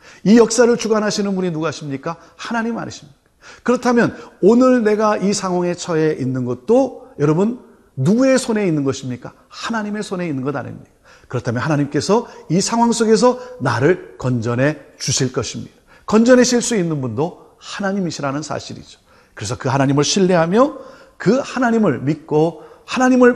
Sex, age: male, 40-59